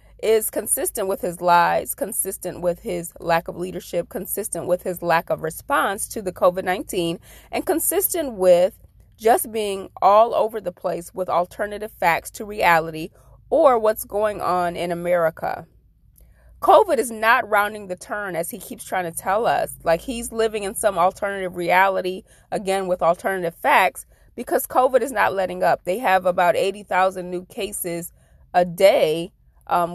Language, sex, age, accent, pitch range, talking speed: English, female, 30-49, American, 175-220 Hz, 160 wpm